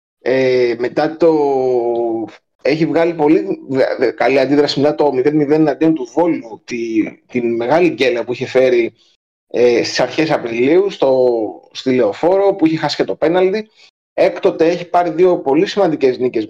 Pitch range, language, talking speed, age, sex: 135-195 Hz, Greek, 140 wpm, 30-49, male